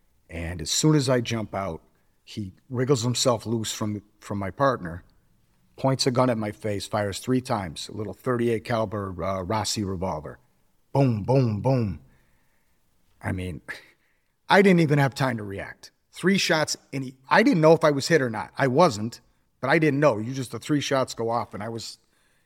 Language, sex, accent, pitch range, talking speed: English, male, American, 100-130 Hz, 190 wpm